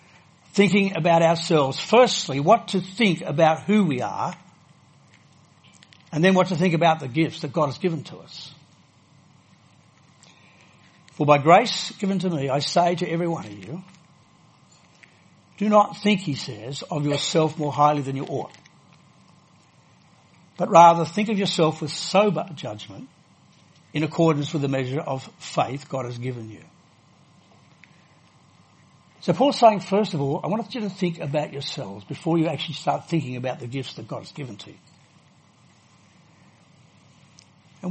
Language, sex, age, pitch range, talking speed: English, male, 60-79, 145-180 Hz, 155 wpm